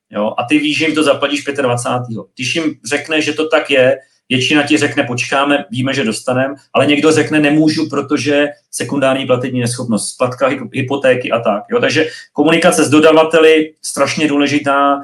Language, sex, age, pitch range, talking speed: Czech, male, 30-49, 120-150 Hz, 170 wpm